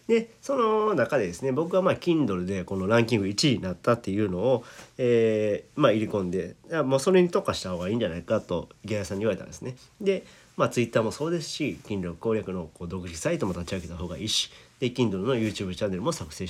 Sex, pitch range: male, 100-155 Hz